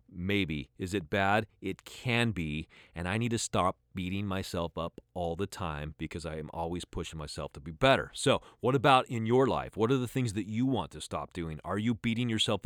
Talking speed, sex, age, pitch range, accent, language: 225 wpm, male, 30-49, 85-115 Hz, American, English